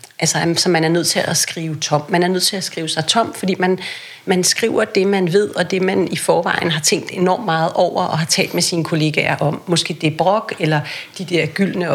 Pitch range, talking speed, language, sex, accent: 160-190 Hz, 245 wpm, Danish, female, native